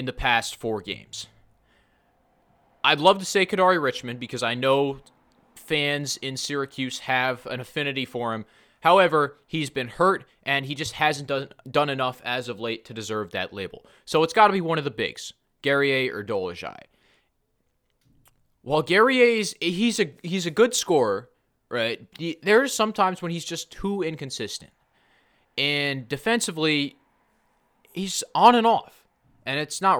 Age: 20-39